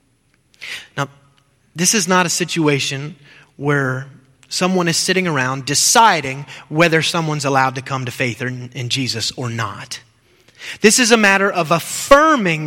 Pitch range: 135-185 Hz